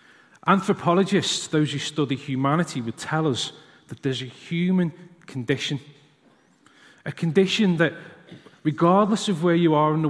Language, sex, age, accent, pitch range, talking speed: English, male, 30-49, British, 140-180 Hz, 135 wpm